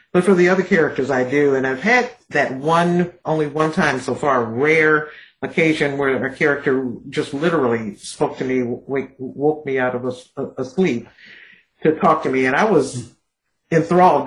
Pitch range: 125-160 Hz